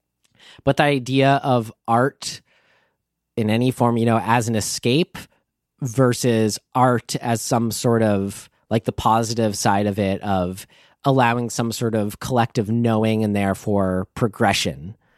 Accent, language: American, English